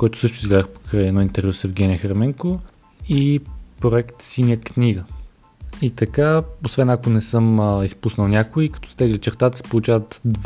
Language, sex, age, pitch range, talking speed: Bulgarian, male, 20-39, 100-120 Hz, 155 wpm